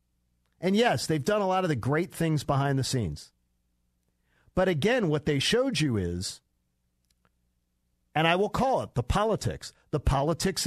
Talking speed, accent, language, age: 165 wpm, American, English, 50-69